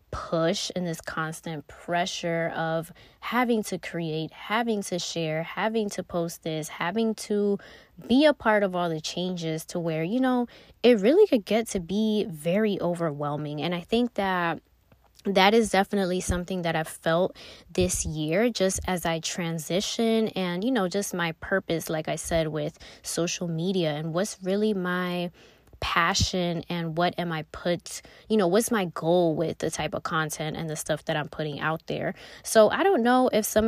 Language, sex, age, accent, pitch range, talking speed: English, female, 20-39, American, 165-215 Hz, 180 wpm